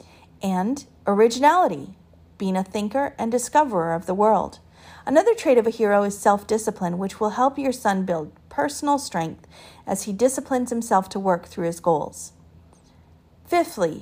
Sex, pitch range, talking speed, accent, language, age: female, 175-255 Hz, 150 wpm, American, English, 40-59